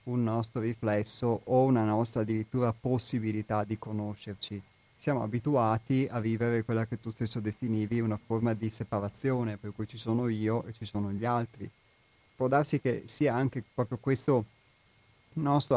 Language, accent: Italian, native